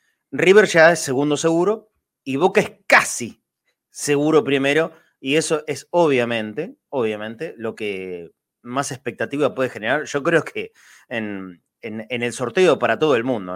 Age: 30-49